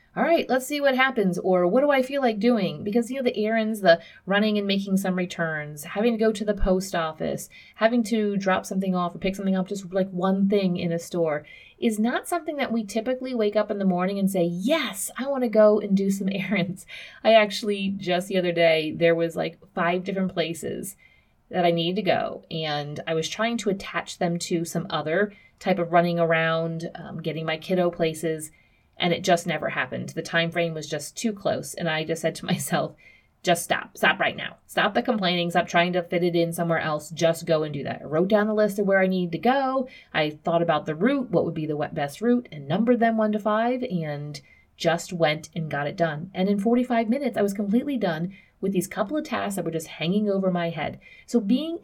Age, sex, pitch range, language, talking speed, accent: 30-49, female, 170-215 Hz, English, 235 wpm, American